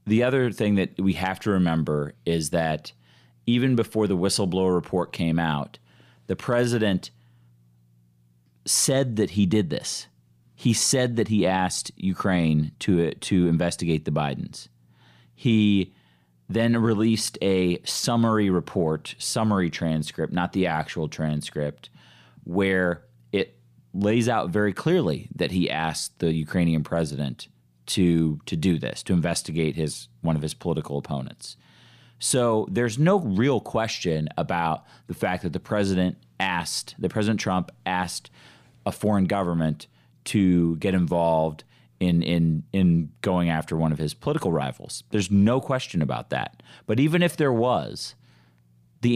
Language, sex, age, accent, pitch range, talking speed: English, male, 30-49, American, 75-110 Hz, 140 wpm